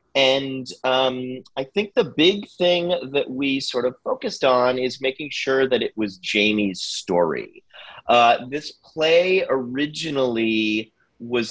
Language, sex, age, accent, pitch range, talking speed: English, male, 30-49, American, 115-140 Hz, 135 wpm